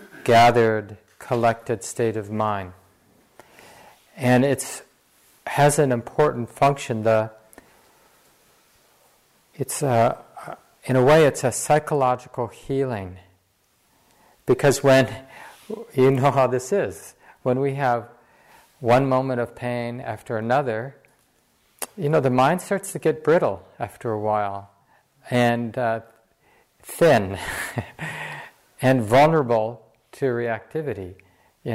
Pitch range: 110-135 Hz